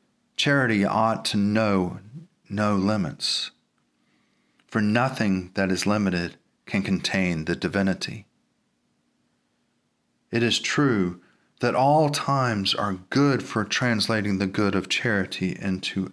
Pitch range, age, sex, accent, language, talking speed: 95-125 Hz, 40-59, male, American, English, 110 wpm